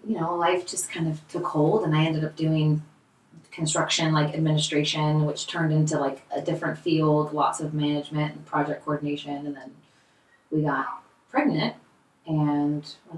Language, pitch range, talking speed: English, 150-245 Hz, 165 wpm